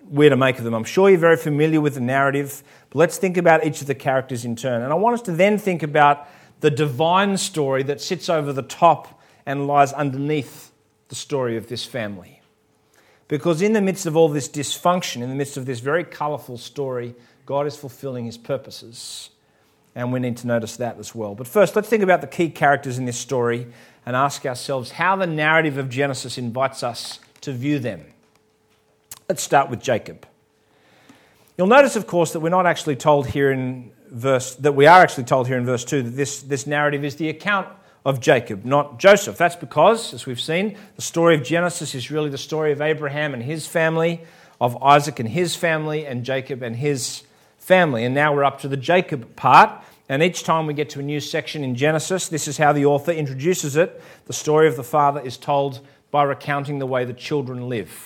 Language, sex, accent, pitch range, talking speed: English, male, Australian, 130-160 Hz, 210 wpm